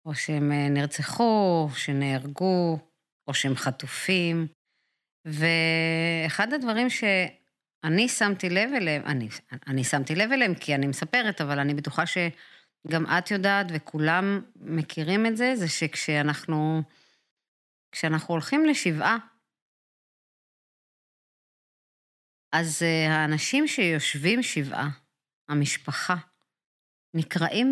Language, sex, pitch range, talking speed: Hebrew, female, 155-200 Hz, 90 wpm